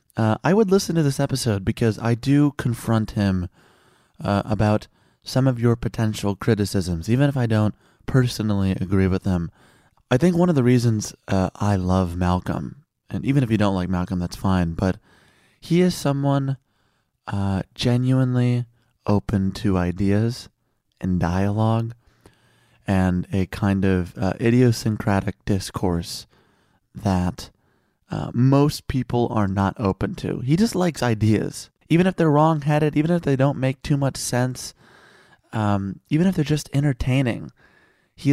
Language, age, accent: English, 30-49, American